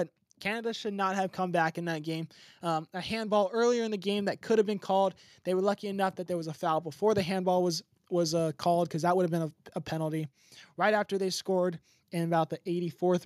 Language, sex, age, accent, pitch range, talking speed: English, male, 20-39, American, 170-200 Hz, 240 wpm